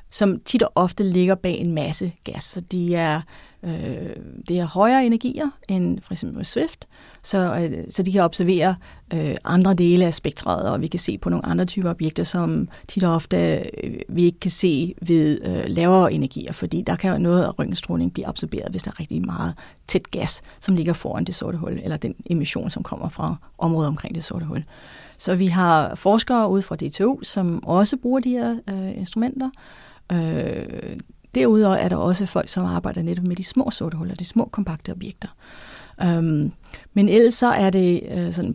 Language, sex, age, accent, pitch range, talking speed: Danish, female, 30-49, native, 165-195 Hz, 195 wpm